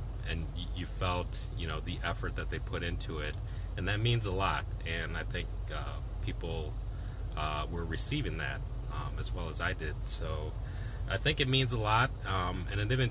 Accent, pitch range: American, 90-105 Hz